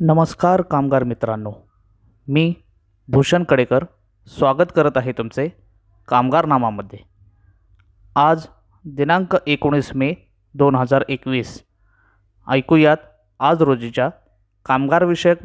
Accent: native